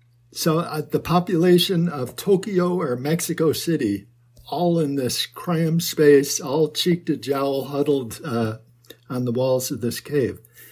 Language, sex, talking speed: English, male, 145 wpm